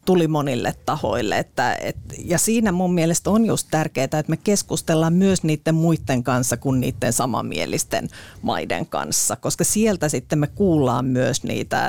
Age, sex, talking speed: 40-59, female, 155 wpm